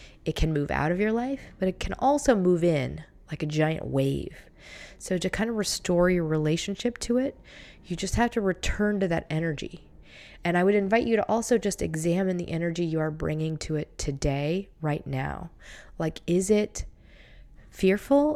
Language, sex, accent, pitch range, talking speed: English, female, American, 155-195 Hz, 185 wpm